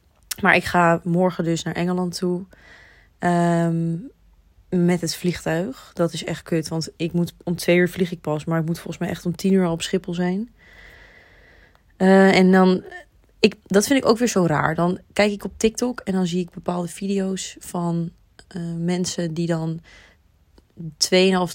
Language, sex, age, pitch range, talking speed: Dutch, female, 20-39, 170-190 Hz, 180 wpm